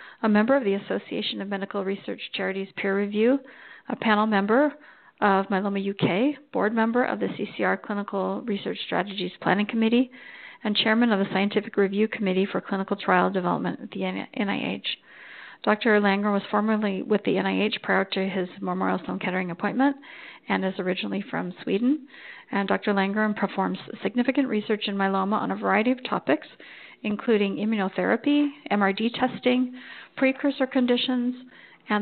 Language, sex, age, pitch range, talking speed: English, female, 40-59, 195-240 Hz, 150 wpm